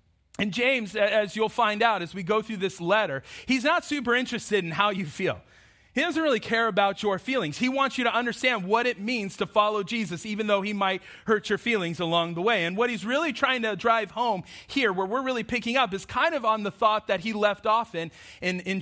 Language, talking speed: English, 240 wpm